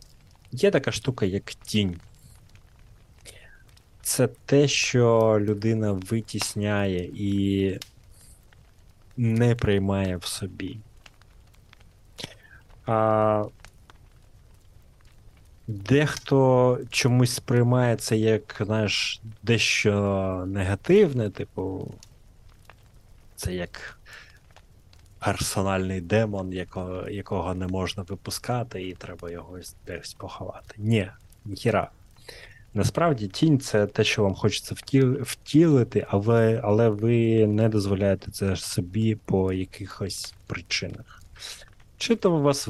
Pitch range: 95-115 Hz